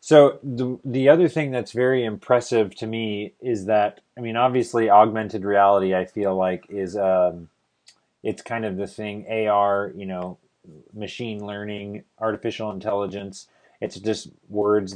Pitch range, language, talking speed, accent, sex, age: 100-115 Hz, English, 150 wpm, American, male, 20-39